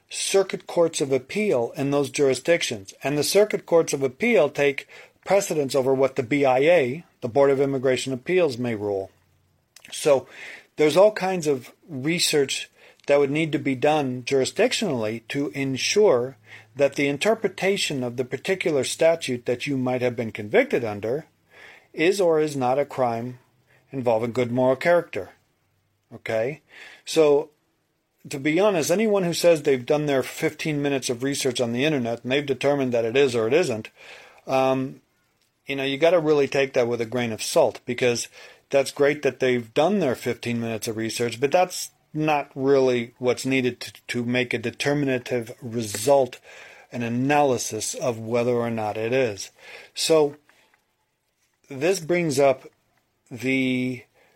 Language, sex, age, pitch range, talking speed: English, male, 40-59, 125-150 Hz, 155 wpm